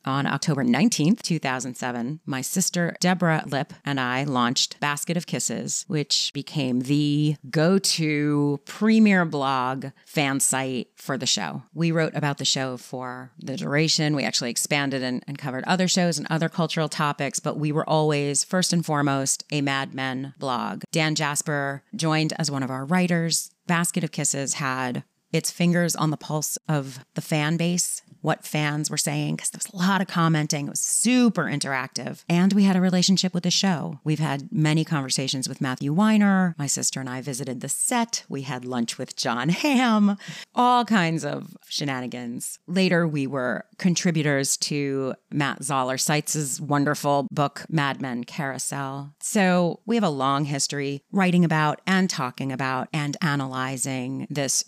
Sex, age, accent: female, 30-49, American